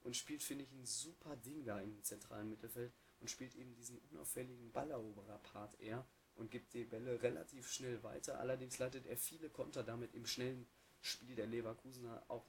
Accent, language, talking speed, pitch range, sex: German, German, 180 wpm, 110-130 Hz, male